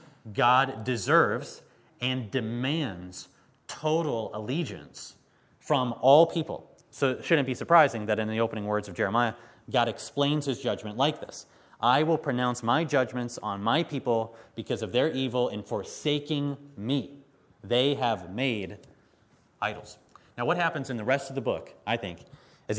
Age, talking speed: 30-49, 155 wpm